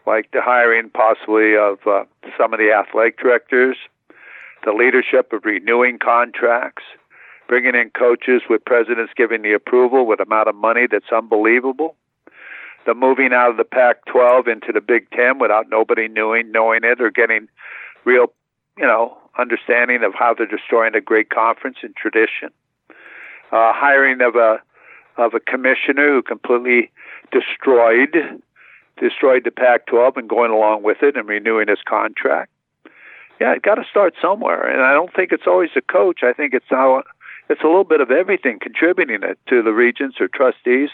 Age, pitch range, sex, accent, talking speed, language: 60-79, 115-145 Hz, male, American, 165 wpm, English